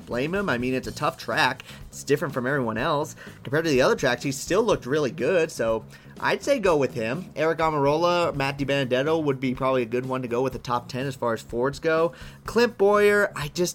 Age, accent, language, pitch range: 30-49, American, English, 120-155 Hz